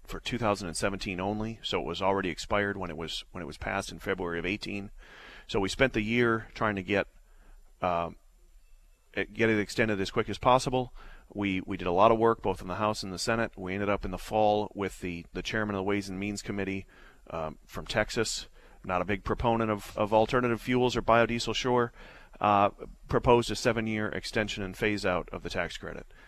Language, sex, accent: English, male, American